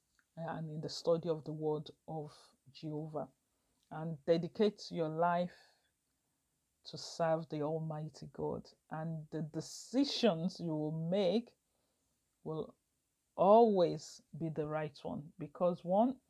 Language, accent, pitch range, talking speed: English, Nigerian, 160-205 Hz, 120 wpm